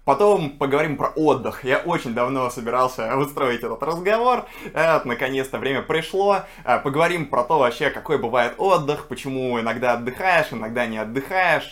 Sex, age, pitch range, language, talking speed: male, 20-39, 115-145 Hz, Russian, 145 wpm